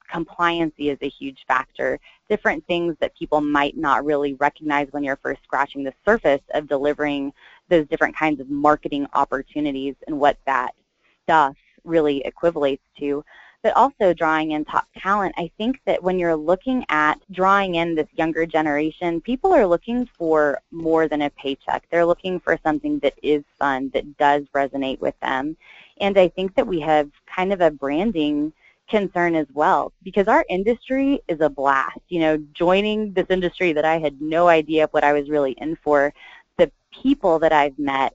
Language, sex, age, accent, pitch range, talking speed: English, female, 20-39, American, 145-180 Hz, 175 wpm